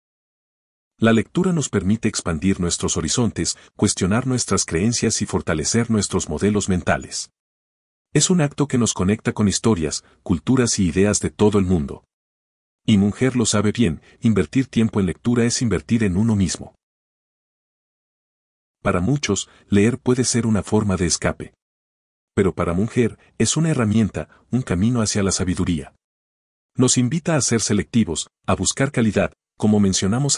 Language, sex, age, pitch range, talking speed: Spanish, male, 40-59, 90-115 Hz, 145 wpm